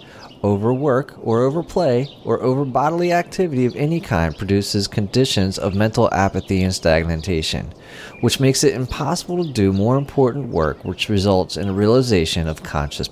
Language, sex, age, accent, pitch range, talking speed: English, male, 40-59, American, 95-135 Hz, 150 wpm